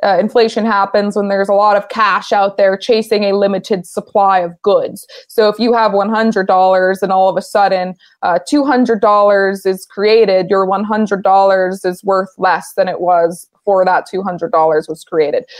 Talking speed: 175 wpm